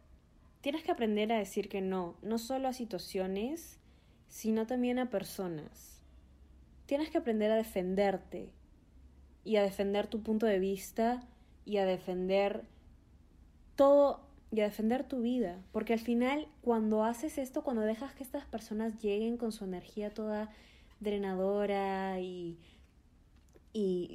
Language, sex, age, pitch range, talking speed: Spanish, female, 20-39, 180-235 Hz, 135 wpm